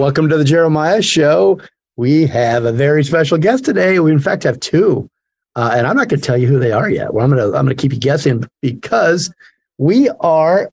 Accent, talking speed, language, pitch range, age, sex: American, 225 wpm, English, 125-155 Hz, 50-69, male